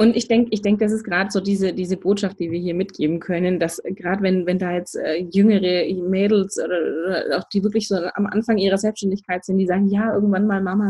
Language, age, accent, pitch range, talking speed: German, 20-39, German, 200-230 Hz, 225 wpm